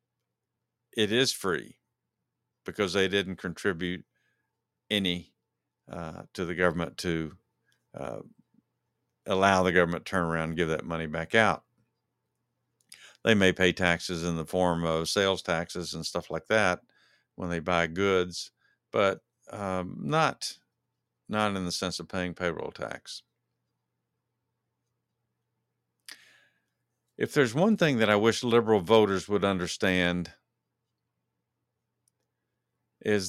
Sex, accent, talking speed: male, American, 120 wpm